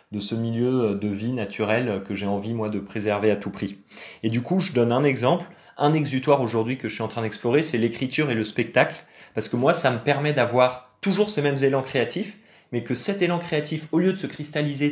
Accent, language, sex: French, French, male